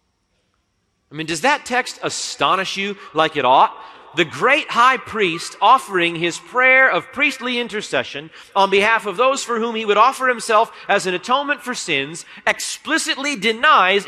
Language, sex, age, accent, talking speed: English, male, 40-59, American, 160 wpm